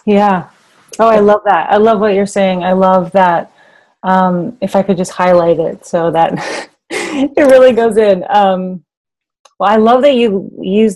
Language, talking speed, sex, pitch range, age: English, 180 wpm, female, 160-195 Hz, 30-49